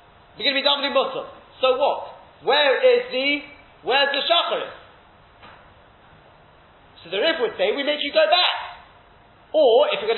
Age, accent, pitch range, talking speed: 30-49, British, 235-300 Hz, 165 wpm